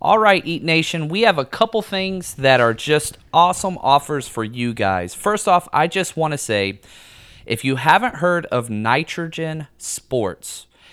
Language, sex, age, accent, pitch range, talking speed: English, male, 30-49, American, 115-160 Hz, 165 wpm